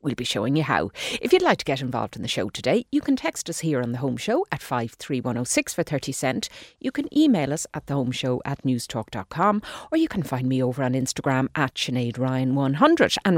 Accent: Irish